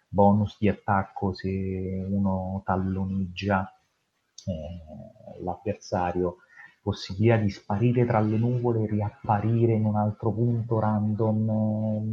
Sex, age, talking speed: male, 30-49, 105 wpm